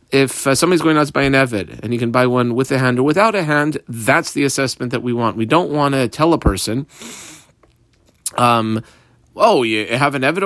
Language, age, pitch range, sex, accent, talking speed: English, 40-59, 120-150 Hz, male, American, 230 wpm